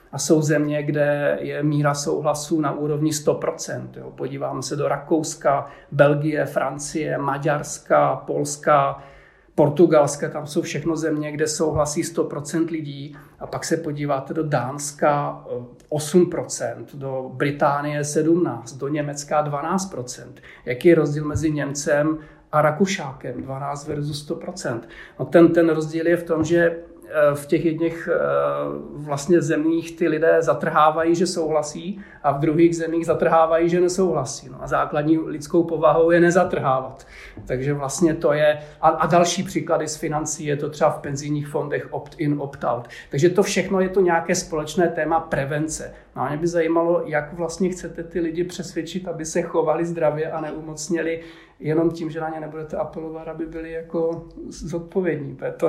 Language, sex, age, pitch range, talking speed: Czech, male, 40-59, 145-165 Hz, 150 wpm